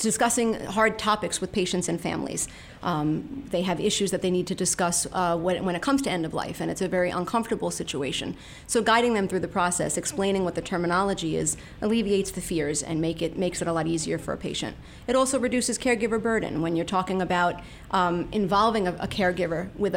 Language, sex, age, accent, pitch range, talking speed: English, female, 30-49, American, 175-215 Hz, 215 wpm